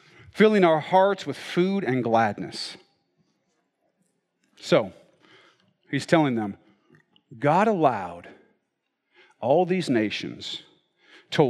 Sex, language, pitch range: male, English, 160-205 Hz